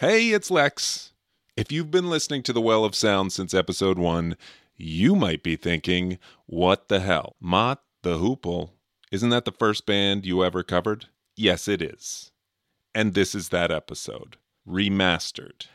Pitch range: 90-115 Hz